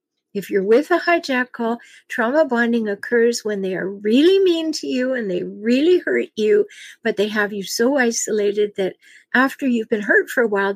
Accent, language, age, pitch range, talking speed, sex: American, English, 50-69, 205-265 Hz, 190 wpm, female